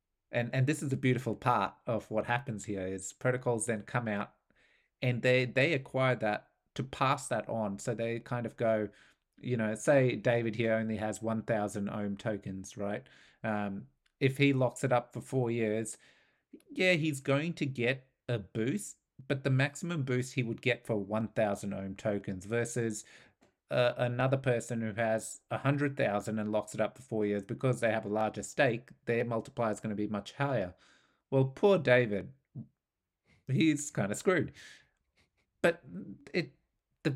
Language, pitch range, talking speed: English, 110-135 Hz, 175 wpm